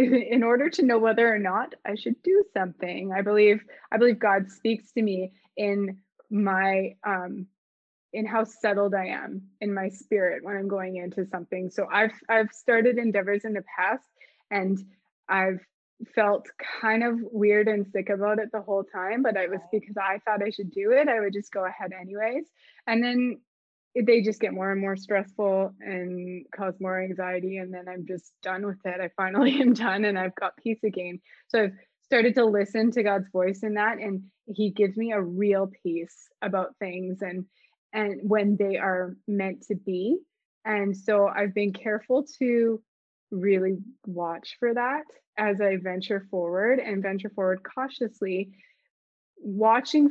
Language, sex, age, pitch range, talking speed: English, female, 20-39, 190-225 Hz, 175 wpm